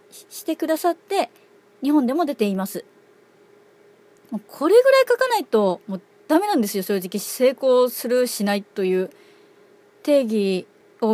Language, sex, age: Japanese, female, 30-49